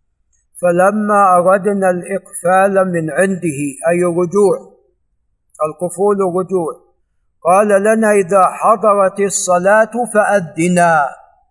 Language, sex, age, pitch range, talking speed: Arabic, male, 50-69, 165-195 Hz, 80 wpm